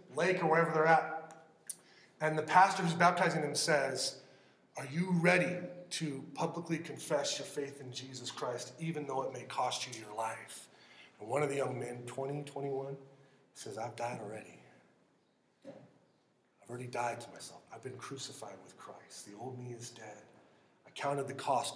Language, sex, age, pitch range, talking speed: English, male, 30-49, 150-190 Hz, 170 wpm